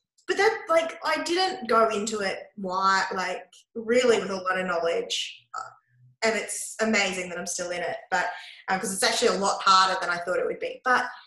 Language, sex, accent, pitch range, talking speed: English, female, Australian, 185-275 Hz, 210 wpm